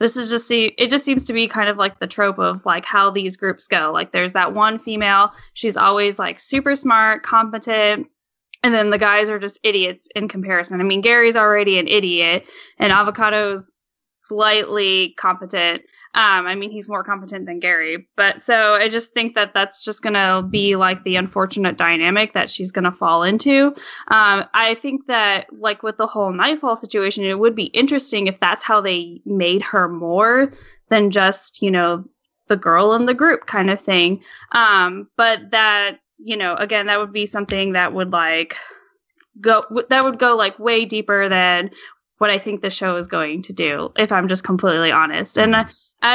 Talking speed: 190 wpm